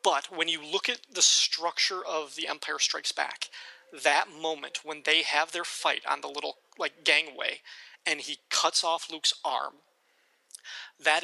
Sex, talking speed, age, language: male, 165 wpm, 30-49, English